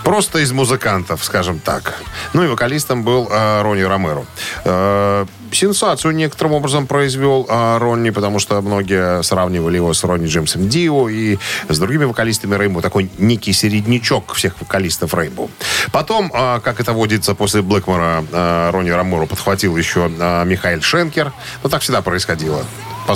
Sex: male